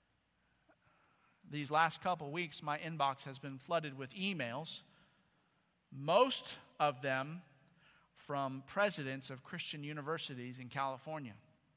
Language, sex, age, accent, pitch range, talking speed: English, male, 40-59, American, 145-190 Hz, 105 wpm